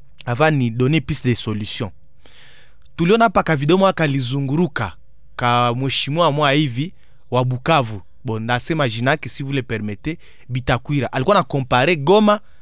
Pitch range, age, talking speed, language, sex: 135-210 Hz, 30-49, 140 wpm, Swahili, male